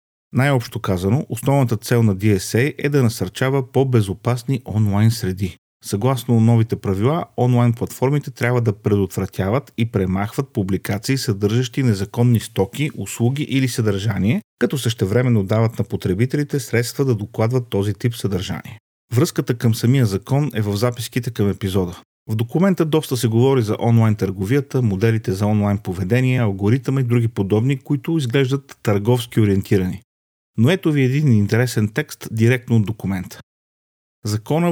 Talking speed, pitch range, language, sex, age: 135 wpm, 105-130 Hz, Bulgarian, male, 40-59